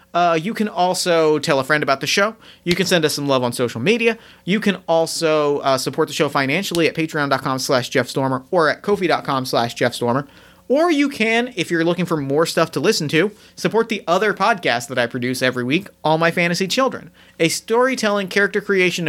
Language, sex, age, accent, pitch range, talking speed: English, male, 30-49, American, 140-185 Hz, 205 wpm